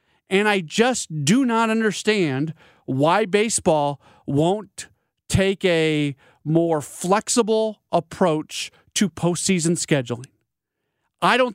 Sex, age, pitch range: male, 40-59, 145-200 Hz